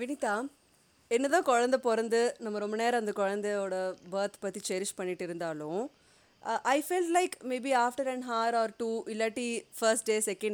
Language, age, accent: Tamil, 30-49, native